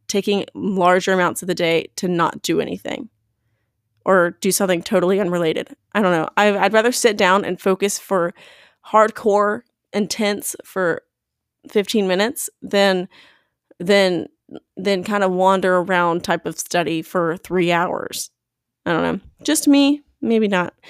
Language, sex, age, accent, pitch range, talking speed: English, female, 20-39, American, 180-205 Hz, 145 wpm